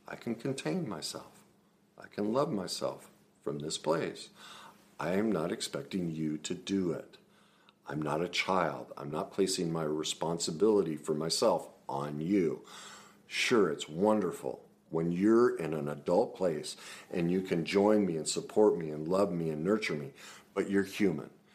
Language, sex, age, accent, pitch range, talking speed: English, male, 50-69, American, 75-95 Hz, 160 wpm